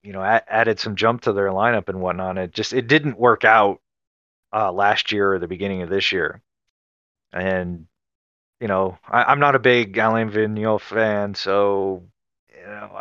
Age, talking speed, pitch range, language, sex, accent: 30-49, 180 wpm, 95-115 Hz, English, male, American